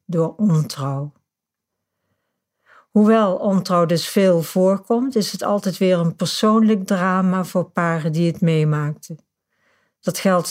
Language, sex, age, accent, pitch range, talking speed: Dutch, female, 60-79, Dutch, 165-195 Hz, 120 wpm